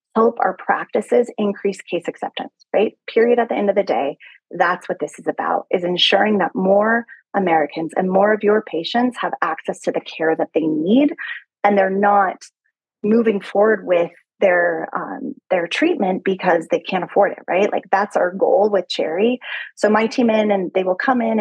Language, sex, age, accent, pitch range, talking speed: English, female, 30-49, American, 190-250 Hz, 190 wpm